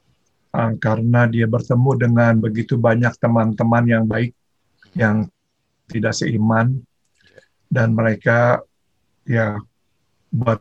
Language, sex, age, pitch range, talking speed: Indonesian, male, 50-69, 110-120 Hz, 90 wpm